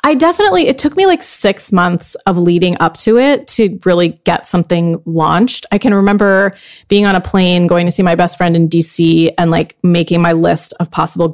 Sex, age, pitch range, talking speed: female, 30-49, 175-215 Hz, 210 wpm